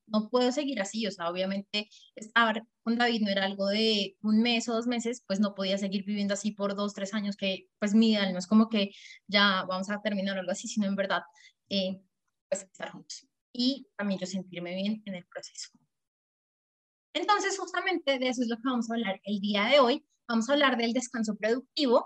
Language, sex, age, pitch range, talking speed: Spanish, female, 20-39, 215-285 Hz, 210 wpm